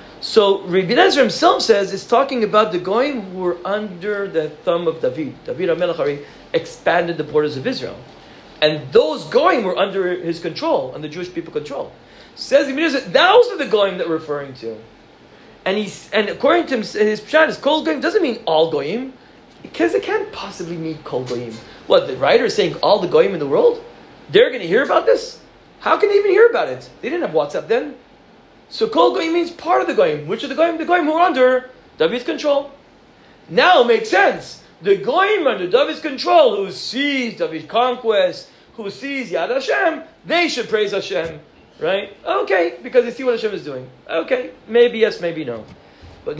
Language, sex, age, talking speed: English, male, 40-59, 195 wpm